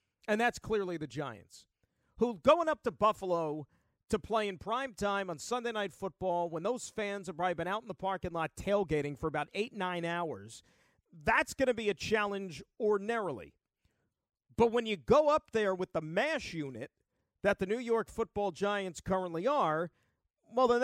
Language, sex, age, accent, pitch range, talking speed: English, male, 50-69, American, 165-225 Hz, 180 wpm